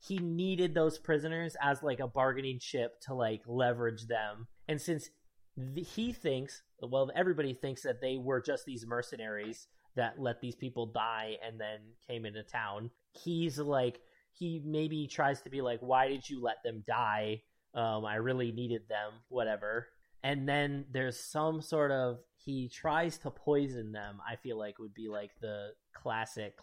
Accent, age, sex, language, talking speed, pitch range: American, 30-49, male, English, 170 wpm, 115-145 Hz